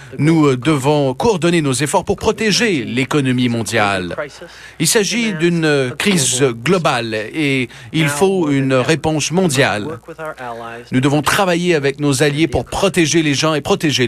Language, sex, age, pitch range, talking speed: French, male, 40-59, 125-160 Hz, 135 wpm